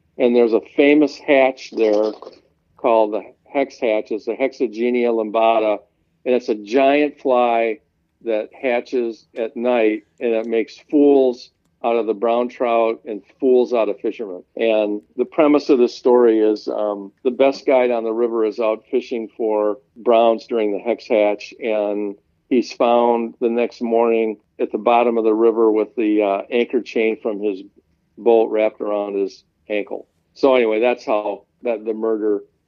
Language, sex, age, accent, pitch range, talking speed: English, male, 50-69, American, 110-125 Hz, 165 wpm